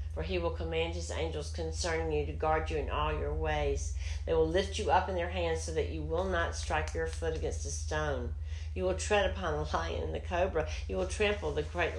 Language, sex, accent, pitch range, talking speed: English, female, American, 80-85 Hz, 240 wpm